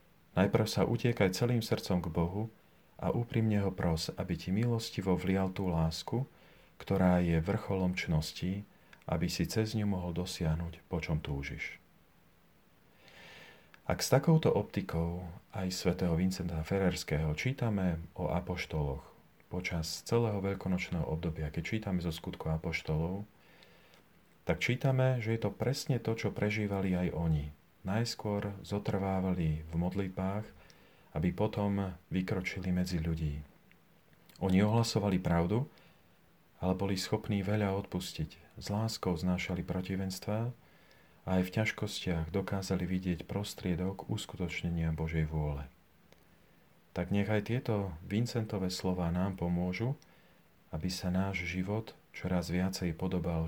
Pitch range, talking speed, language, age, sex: 85-105 Hz, 120 wpm, Slovak, 40-59, male